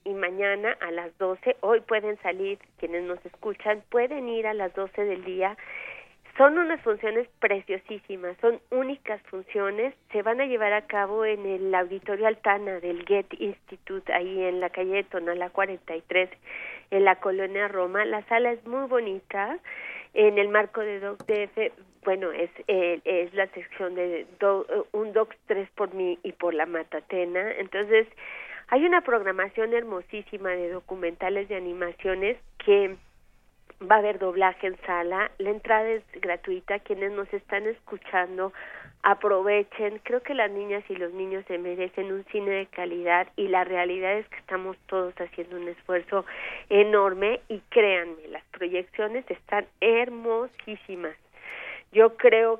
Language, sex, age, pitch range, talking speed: Spanish, female, 40-59, 185-215 Hz, 150 wpm